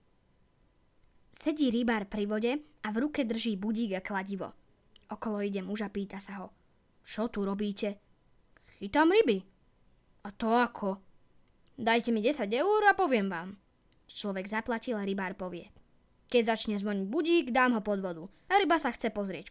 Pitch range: 195-240 Hz